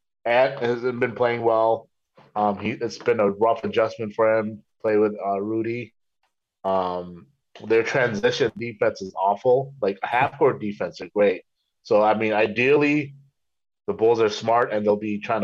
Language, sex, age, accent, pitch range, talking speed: English, male, 30-49, American, 100-120 Hz, 165 wpm